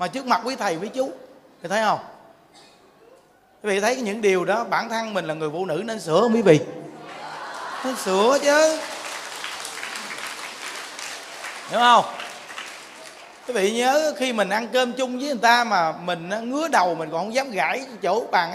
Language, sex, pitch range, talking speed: Vietnamese, male, 185-255 Hz, 175 wpm